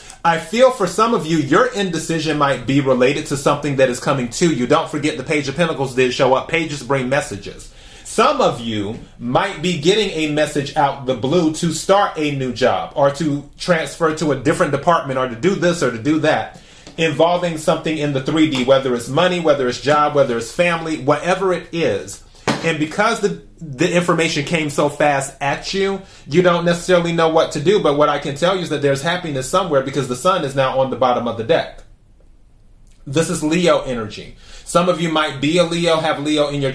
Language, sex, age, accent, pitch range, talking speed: English, male, 30-49, American, 135-170 Hz, 215 wpm